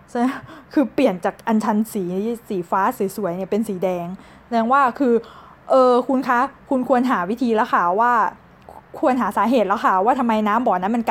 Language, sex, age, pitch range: Thai, female, 20-39, 195-250 Hz